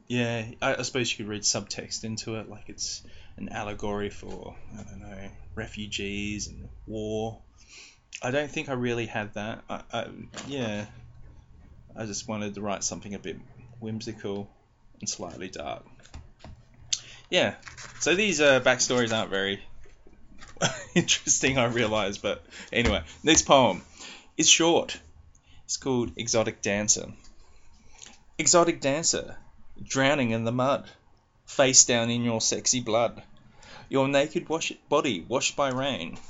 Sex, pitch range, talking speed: male, 100-125 Hz, 135 wpm